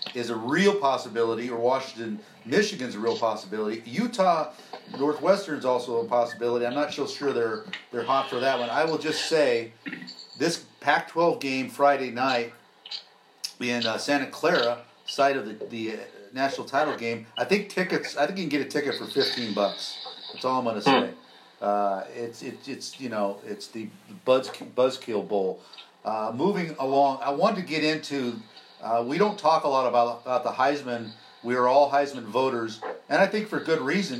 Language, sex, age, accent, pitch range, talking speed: English, male, 50-69, American, 120-160 Hz, 180 wpm